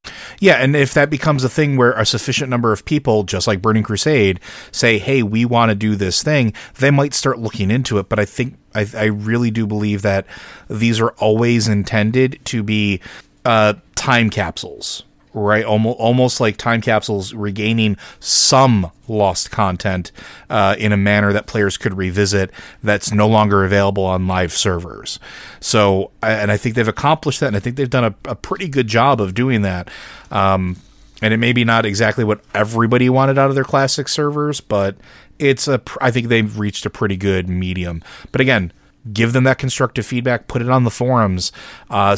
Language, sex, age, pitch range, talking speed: English, male, 30-49, 100-125 Hz, 190 wpm